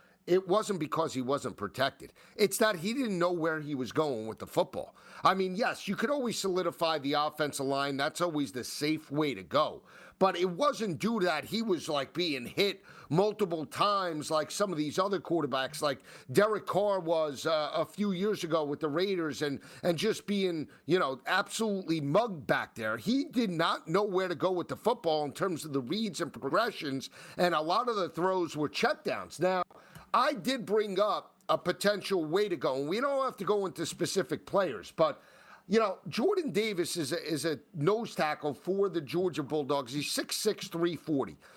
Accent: American